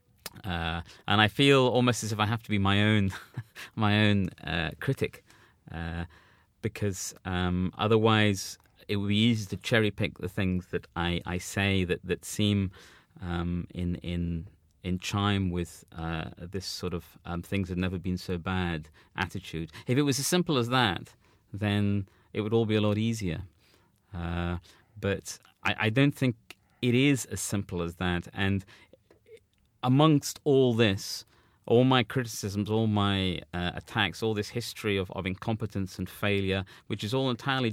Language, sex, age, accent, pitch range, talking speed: English, male, 30-49, British, 90-110 Hz, 165 wpm